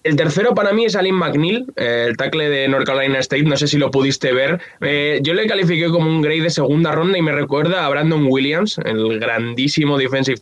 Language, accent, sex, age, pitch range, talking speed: Spanish, Spanish, male, 20-39, 135-170 Hz, 220 wpm